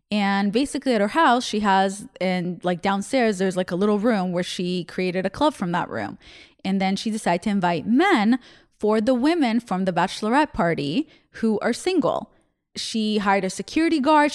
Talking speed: 190 wpm